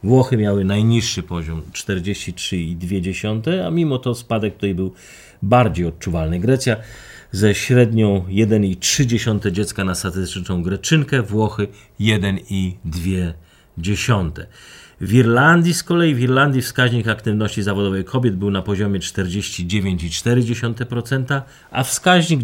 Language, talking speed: Polish, 105 wpm